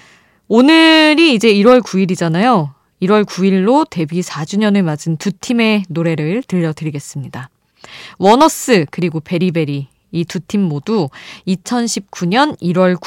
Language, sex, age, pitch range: Korean, female, 20-39, 165-230 Hz